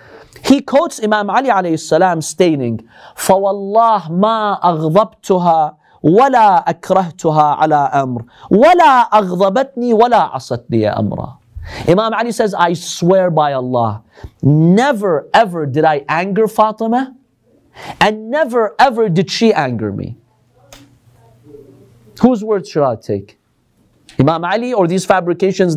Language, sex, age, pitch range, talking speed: English, male, 40-59, 140-215 Hz, 85 wpm